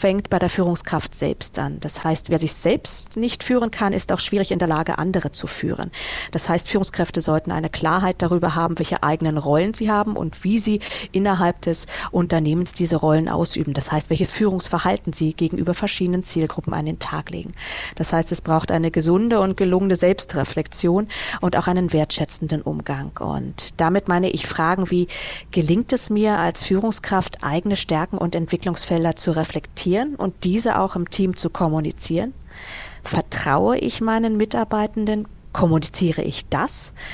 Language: German